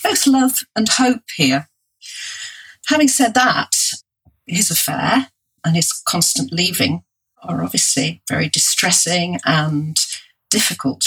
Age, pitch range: 40-59, 150-230 Hz